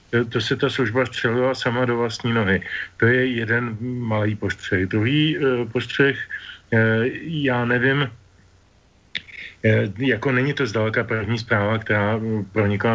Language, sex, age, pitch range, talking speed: Slovak, male, 40-59, 110-125 Hz, 120 wpm